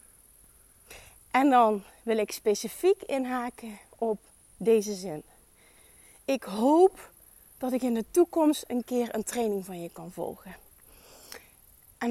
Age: 30-49